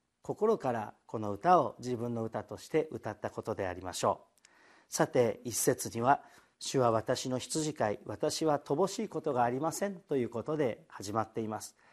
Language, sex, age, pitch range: Japanese, male, 50-69, 115-155 Hz